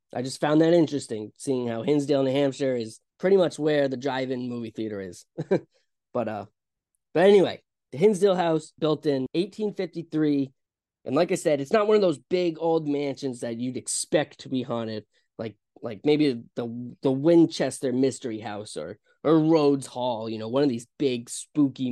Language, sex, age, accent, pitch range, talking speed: English, male, 10-29, American, 125-170 Hz, 180 wpm